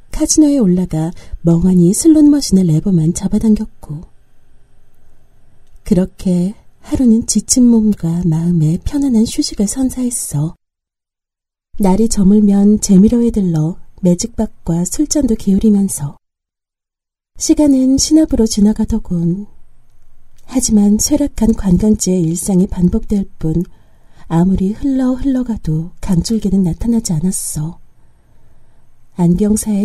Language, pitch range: Korean, 170-230 Hz